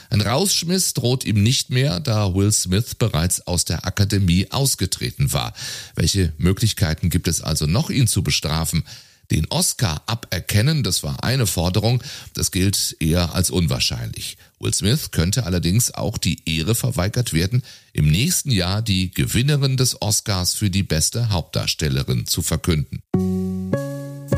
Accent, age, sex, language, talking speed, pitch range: German, 40-59, male, German, 145 wpm, 90-125 Hz